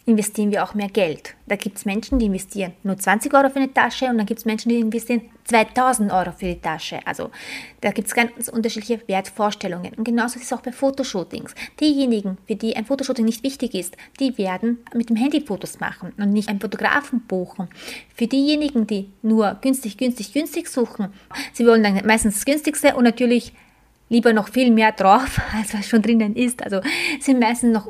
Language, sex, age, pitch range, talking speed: German, female, 20-39, 200-240 Hz, 200 wpm